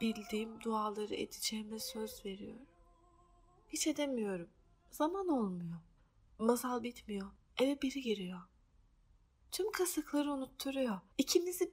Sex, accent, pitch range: female, native, 190-265 Hz